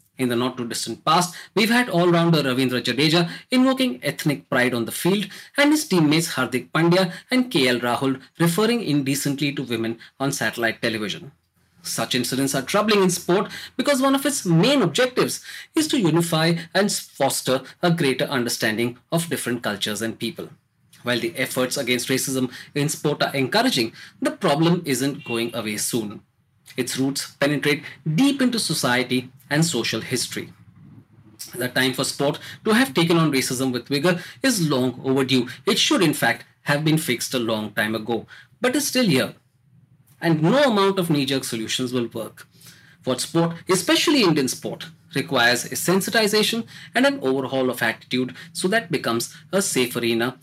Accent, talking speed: Indian, 165 wpm